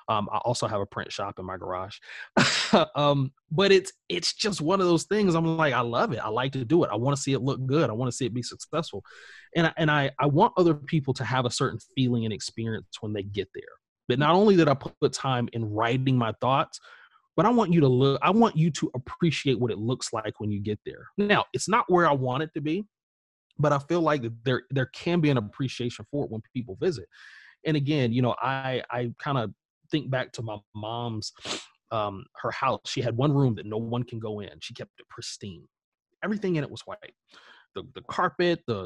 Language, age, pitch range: English, 30-49, 115-155 Hz